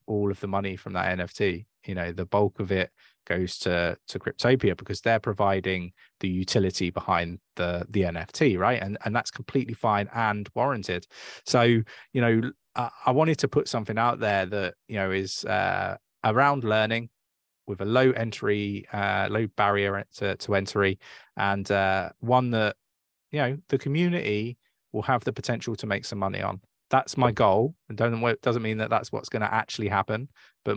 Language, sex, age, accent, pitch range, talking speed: English, male, 20-39, British, 95-115 Hz, 180 wpm